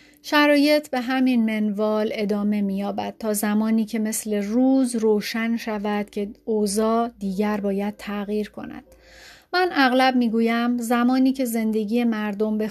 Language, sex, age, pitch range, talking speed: Persian, female, 40-59, 215-245 Hz, 130 wpm